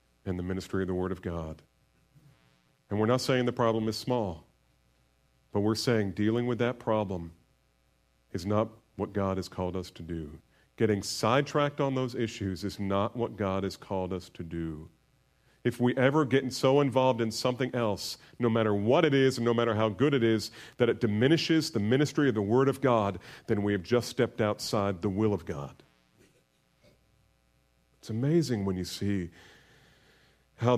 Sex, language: male, English